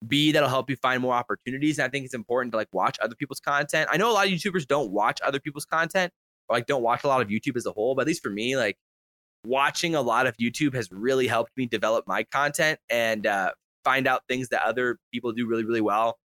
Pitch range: 110-135 Hz